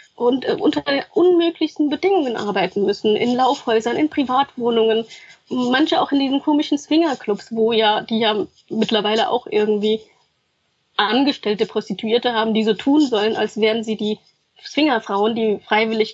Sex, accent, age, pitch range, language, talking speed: female, German, 20-39, 220-275 Hz, German, 140 wpm